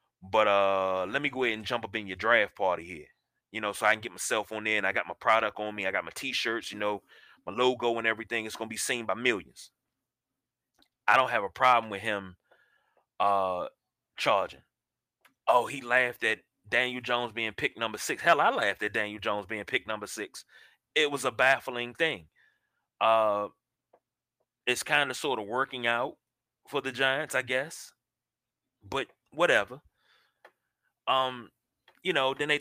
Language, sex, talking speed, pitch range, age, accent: English, male, 185 wpm, 105-125 Hz, 30-49, American